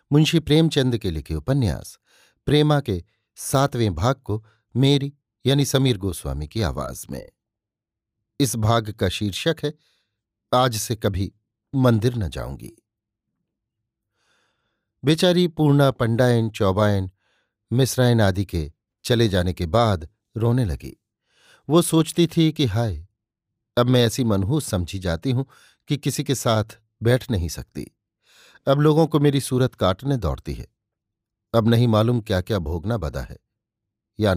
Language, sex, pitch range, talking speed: Hindi, male, 100-125 Hz, 135 wpm